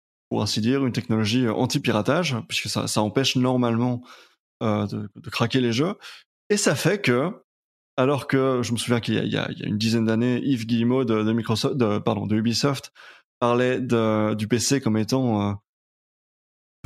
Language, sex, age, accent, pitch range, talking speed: French, male, 20-39, French, 110-130 Hz, 185 wpm